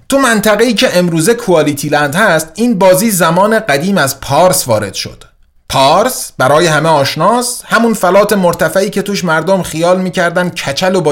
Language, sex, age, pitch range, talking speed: Persian, male, 30-49, 140-210 Hz, 155 wpm